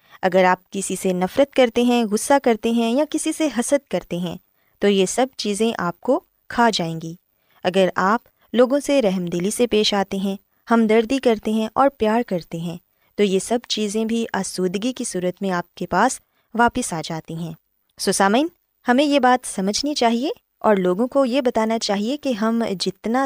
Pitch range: 190-260 Hz